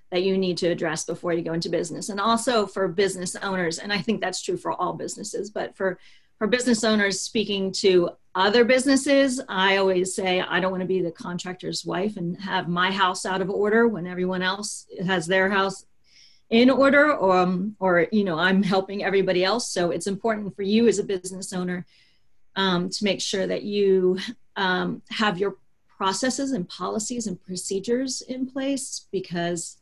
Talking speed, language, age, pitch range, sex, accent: 185 wpm, English, 40-59, 180-210 Hz, female, American